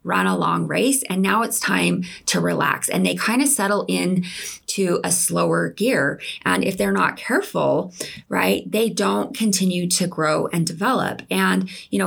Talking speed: 180 wpm